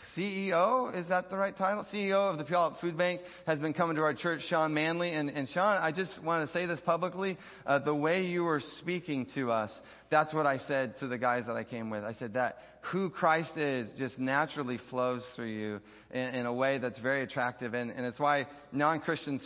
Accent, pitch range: American, 120-155 Hz